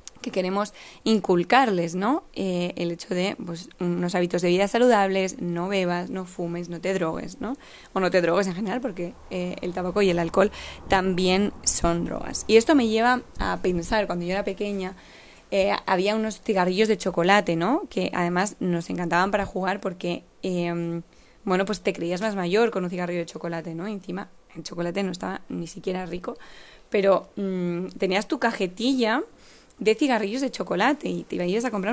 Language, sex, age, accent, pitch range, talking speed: Spanish, female, 20-39, Spanish, 175-210 Hz, 185 wpm